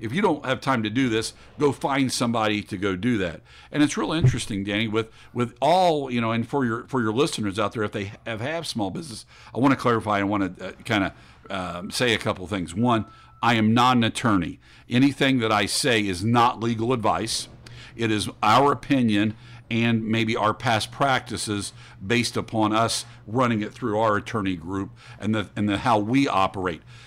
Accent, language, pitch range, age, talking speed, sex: American, English, 105-130 Hz, 50-69, 210 wpm, male